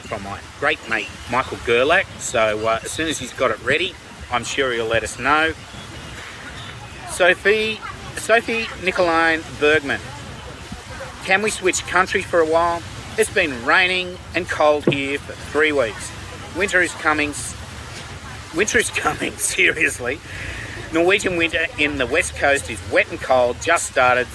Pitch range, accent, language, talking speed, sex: 115-170 Hz, Australian, English, 150 wpm, male